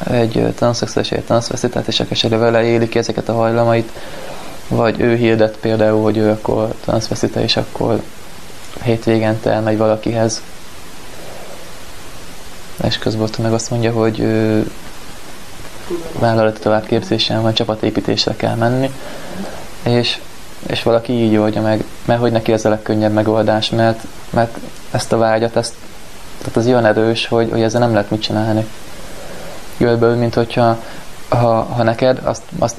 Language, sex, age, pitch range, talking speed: Hungarian, male, 20-39, 110-120 Hz, 135 wpm